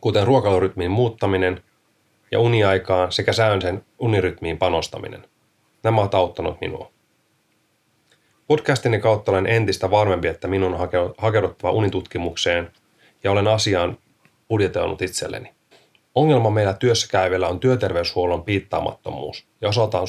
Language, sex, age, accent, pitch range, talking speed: Finnish, male, 30-49, native, 90-110 Hz, 110 wpm